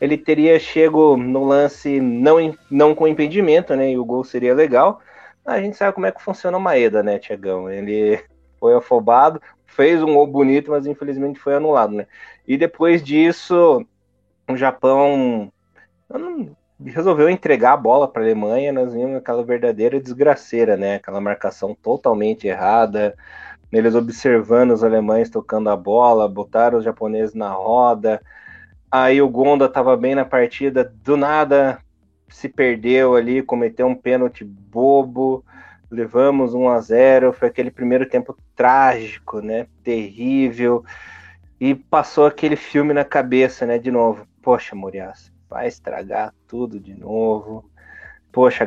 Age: 20-39